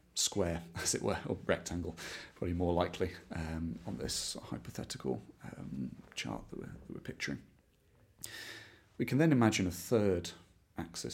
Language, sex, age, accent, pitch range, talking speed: English, male, 30-49, British, 85-110 Hz, 145 wpm